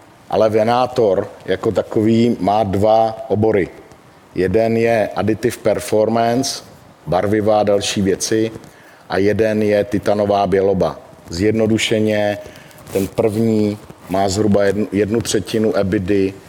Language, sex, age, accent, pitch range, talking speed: Czech, male, 50-69, native, 100-115 Hz, 100 wpm